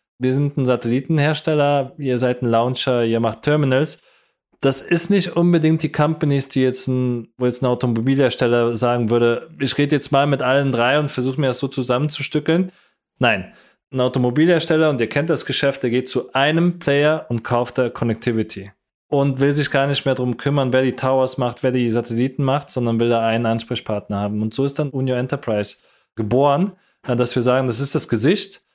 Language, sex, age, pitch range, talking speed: German, male, 20-39, 120-145 Hz, 190 wpm